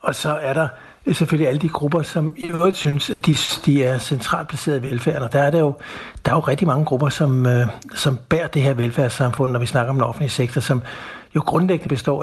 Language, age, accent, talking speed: Danish, 60-79, native, 230 wpm